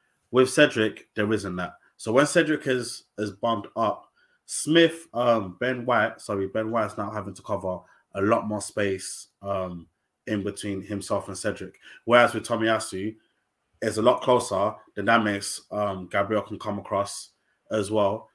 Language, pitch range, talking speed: English, 95-115 Hz, 155 wpm